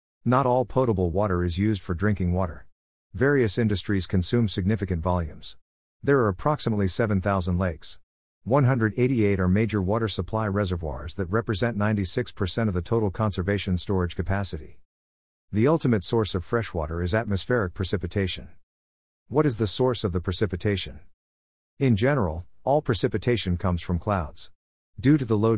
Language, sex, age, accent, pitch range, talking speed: English, male, 50-69, American, 90-115 Hz, 140 wpm